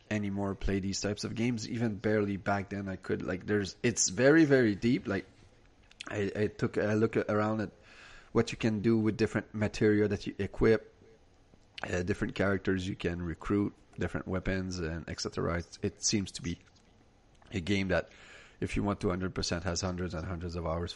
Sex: male